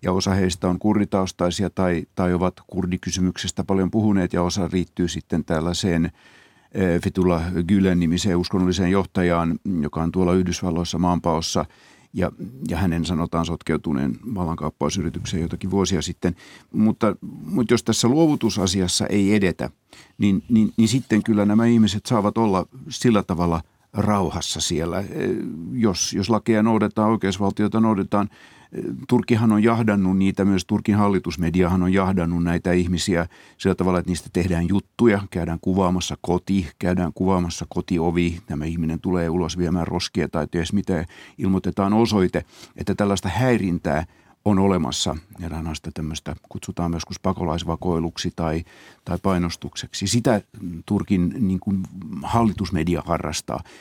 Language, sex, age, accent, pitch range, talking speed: Finnish, male, 50-69, native, 85-100 Hz, 125 wpm